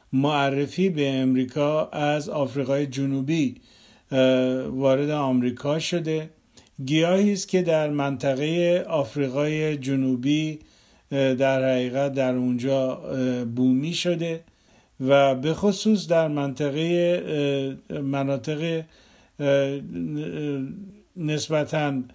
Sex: male